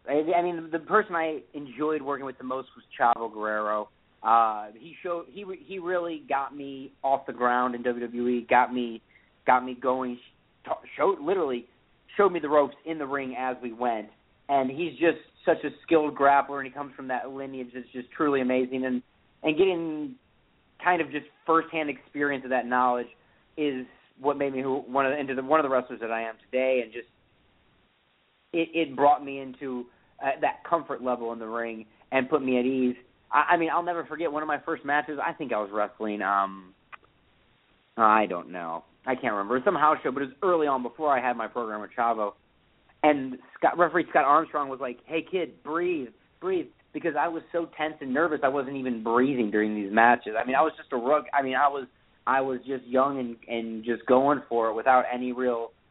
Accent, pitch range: American, 120-150 Hz